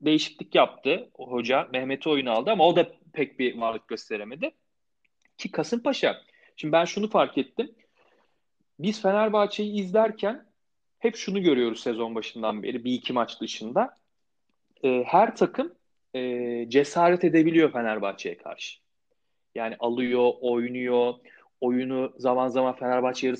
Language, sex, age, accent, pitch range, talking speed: Turkish, male, 40-59, native, 130-200 Hz, 125 wpm